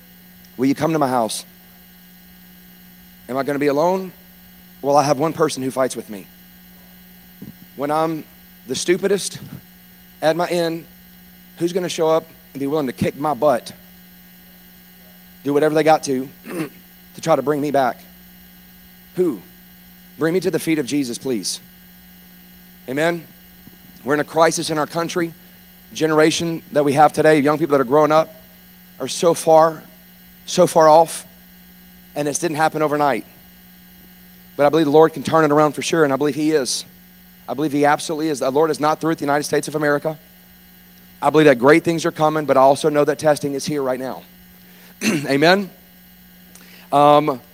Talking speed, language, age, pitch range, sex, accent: 175 wpm, English, 40-59, 150-185 Hz, male, American